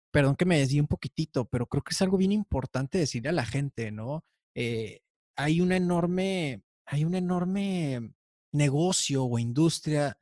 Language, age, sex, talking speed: Spanish, 30-49, male, 155 wpm